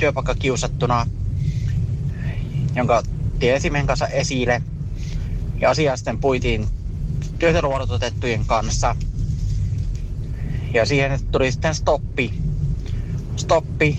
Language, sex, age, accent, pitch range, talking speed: Finnish, male, 30-49, native, 120-150 Hz, 75 wpm